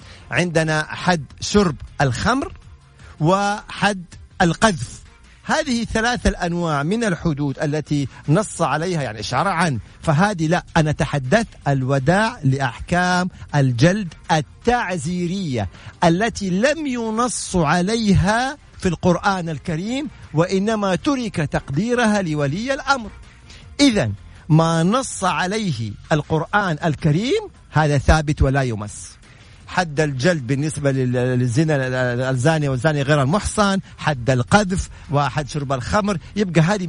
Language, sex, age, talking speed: Arabic, male, 50-69, 100 wpm